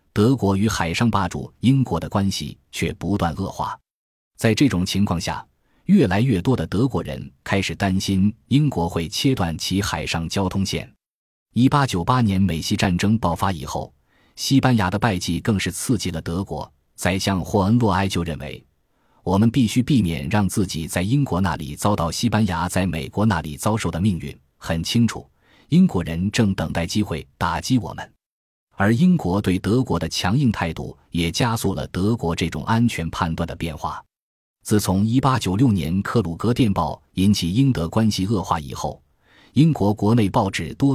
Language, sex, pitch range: Chinese, male, 85-115 Hz